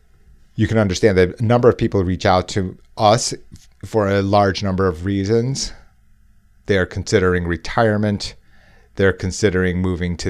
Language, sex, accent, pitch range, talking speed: English, male, American, 95-110 Hz, 145 wpm